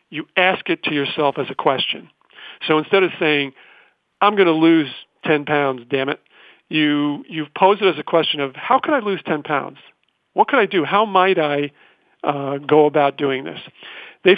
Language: English